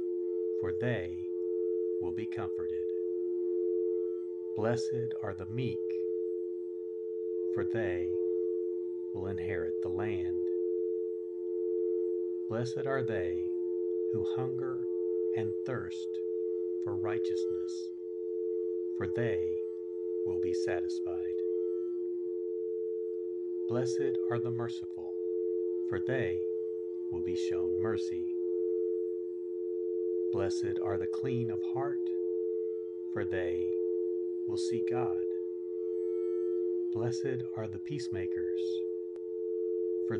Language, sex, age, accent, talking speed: English, male, 50-69, American, 80 wpm